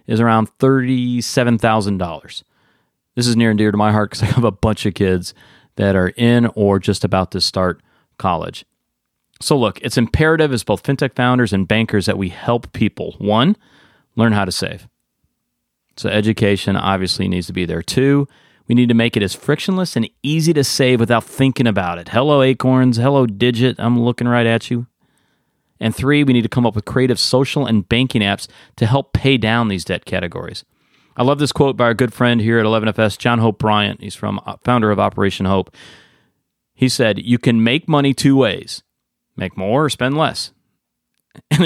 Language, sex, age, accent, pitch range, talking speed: English, male, 30-49, American, 105-130 Hz, 190 wpm